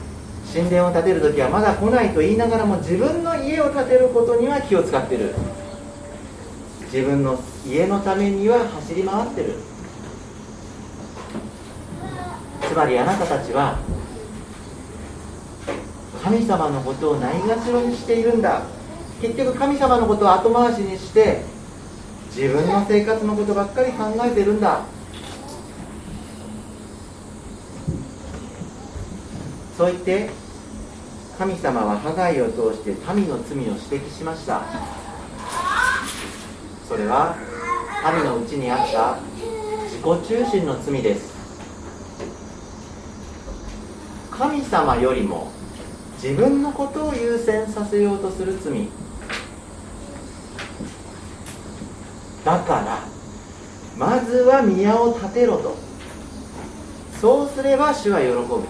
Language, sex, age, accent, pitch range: Japanese, male, 40-59, native, 180-250 Hz